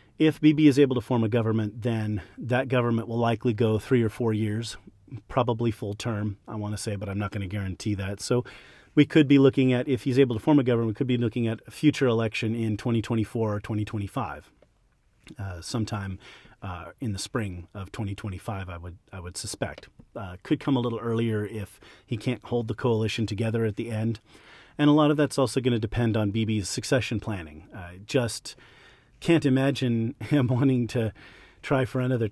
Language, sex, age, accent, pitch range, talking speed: English, male, 40-59, American, 105-130 Hz, 200 wpm